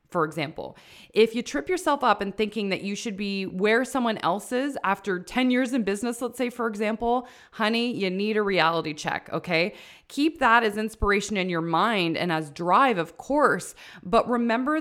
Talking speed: 190 wpm